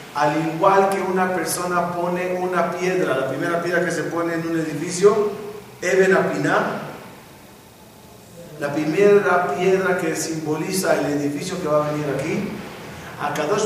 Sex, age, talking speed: male, 40-59, 145 wpm